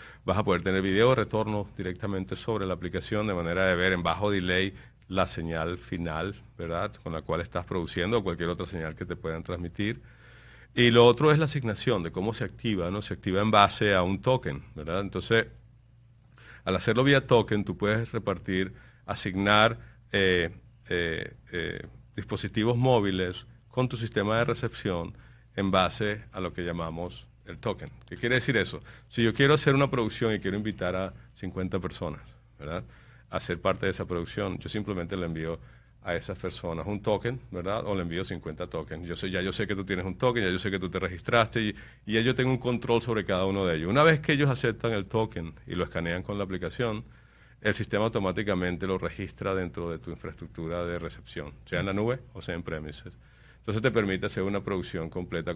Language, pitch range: Spanish, 90-115 Hz